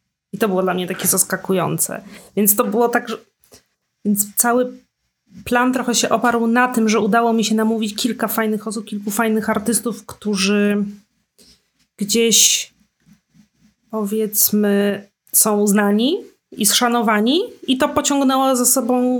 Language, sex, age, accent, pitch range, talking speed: Polish, female, 30-49, native, 205-245 Hz, 135 wpm